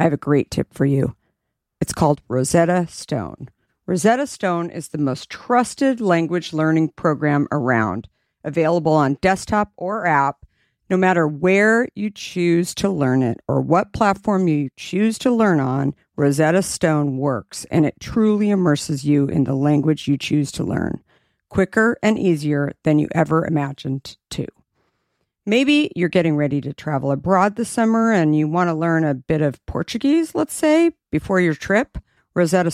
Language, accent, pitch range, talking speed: English, American, 140-190 Hz, 165 wpm